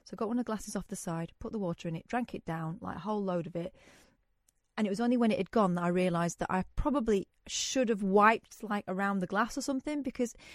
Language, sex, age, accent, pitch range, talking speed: English, female, 30-49, British, 170-220 Hz, 275 wpm